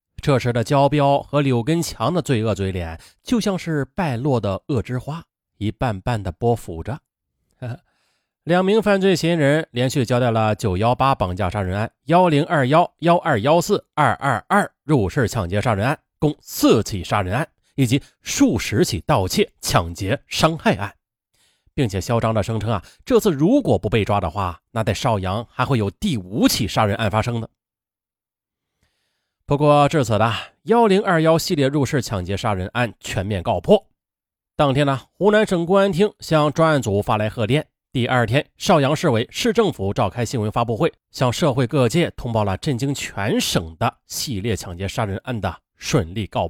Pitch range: 110-155 Hz